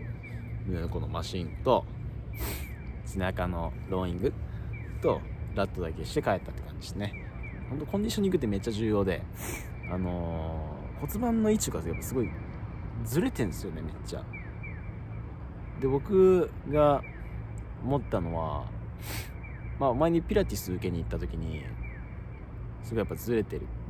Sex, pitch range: male, 95-130 Hz